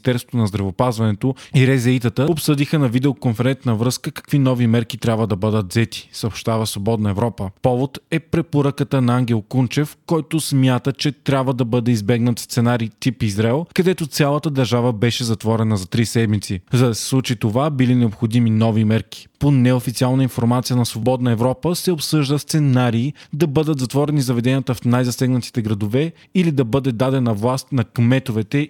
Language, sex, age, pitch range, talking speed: Bulgarian, male, 20-39, 115-140 Hz, 155 wpm